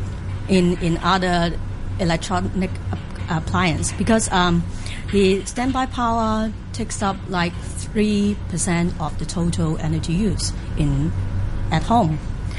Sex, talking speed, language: female, 110 wpm, English